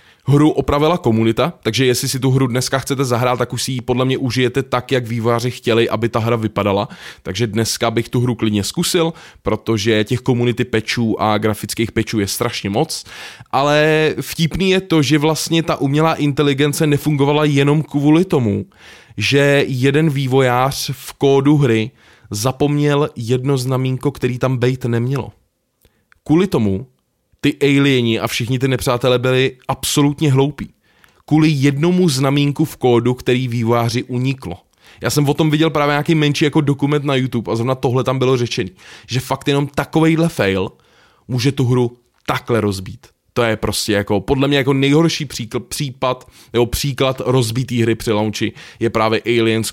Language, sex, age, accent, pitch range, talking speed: Czech, male, 20-39, native, 115-145 Hz, 165 wpm